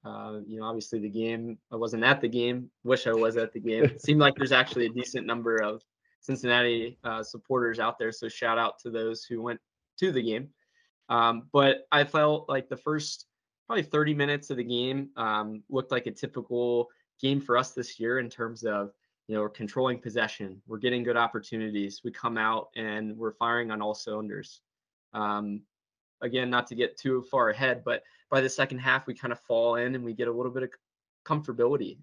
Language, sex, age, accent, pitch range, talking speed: English, male, 20-39, American, 110-125 Hz, 205 wpm